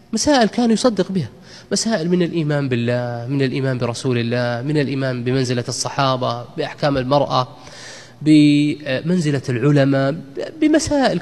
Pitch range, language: 130-190 Hz, Arabic